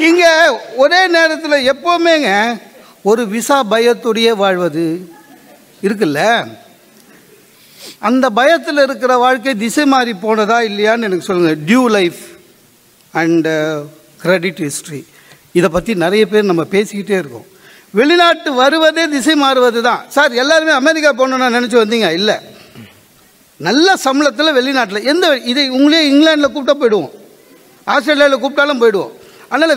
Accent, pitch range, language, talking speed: native, 220-290 Hz, Tamil, 115 wpm